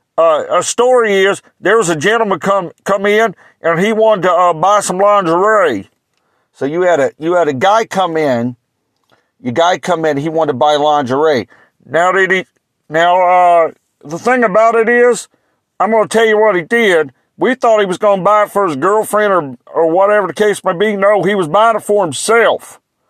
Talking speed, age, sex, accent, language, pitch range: 210 wpm, 50-69, male, American, English, 160-215 Hz